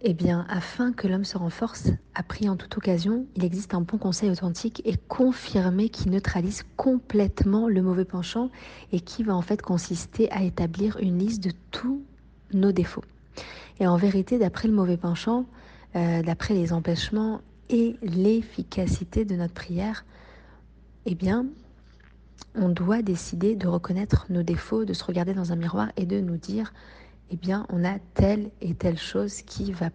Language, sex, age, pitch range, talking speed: French, female, 30-49, 180-220 Hz, 170 wpm